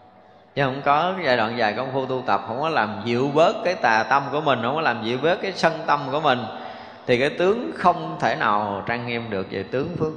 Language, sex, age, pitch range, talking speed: Vietnamese, male, 20-39, 120-160 Hz, 250 wpm